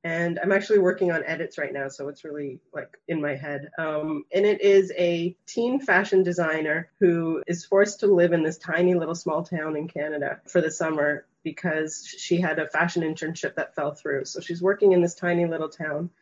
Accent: American